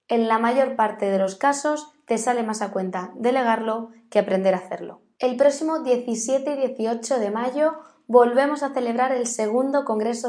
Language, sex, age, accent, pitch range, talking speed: Spanish, female, 20-39, Spanish, 205-270 Hz, 175 wpm